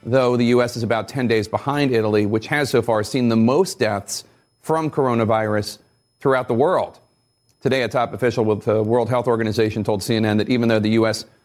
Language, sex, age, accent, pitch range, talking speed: English, male, 40-59, American, 110-135 Hz, 200 wpm